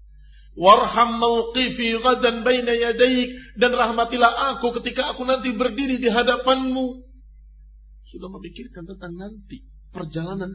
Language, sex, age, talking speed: Indonesian, male, 50-69, 100 wpm